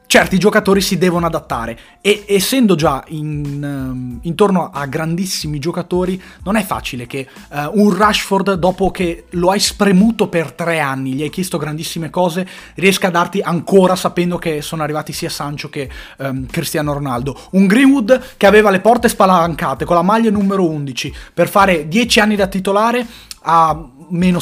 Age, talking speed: 30-49, 155 wpm